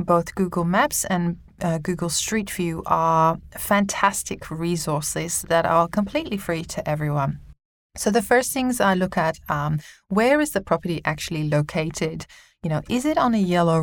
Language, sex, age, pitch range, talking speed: English, female, 20-39, 160-195 Hz, 165 wpm